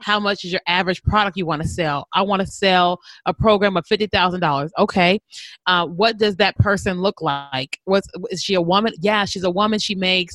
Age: 30-49